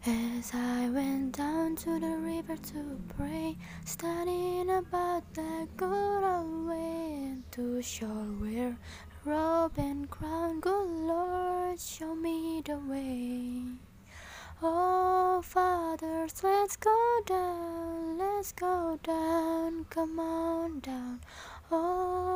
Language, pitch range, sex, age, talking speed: Indonesian, 280-360 Hz, female, 10-29, 105 wpm